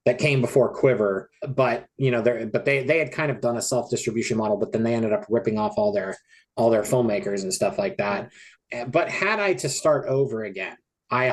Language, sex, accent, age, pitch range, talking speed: English, male, American, 30-49, 115-145 Hz, 230 wpm